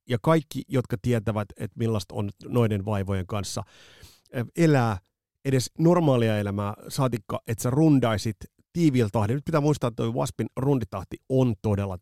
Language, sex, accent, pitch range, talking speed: Finnish, male, native, 105-130 Hz, 140 wpm